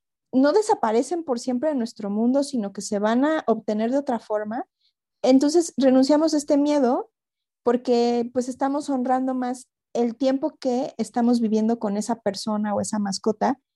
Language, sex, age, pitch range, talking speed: Spanish, female, 30-49, 210-255 Hz, 160 wpm